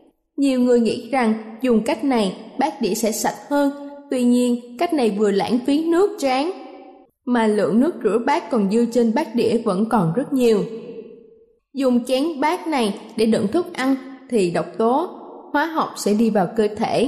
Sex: female